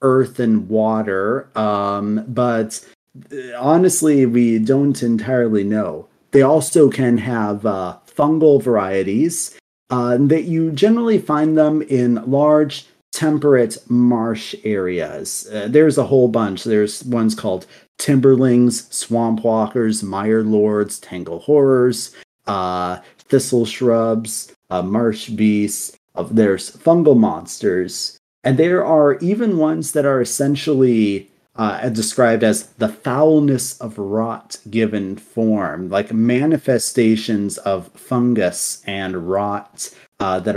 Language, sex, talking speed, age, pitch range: English, male, 115 wpm, 30-49, 105-135 Hz